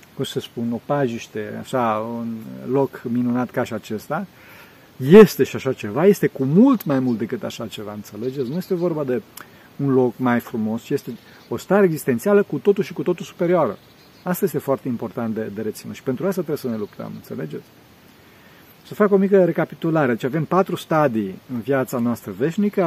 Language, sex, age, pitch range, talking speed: Romanian, male, 40-59, 115-165 Hz, 180 wpm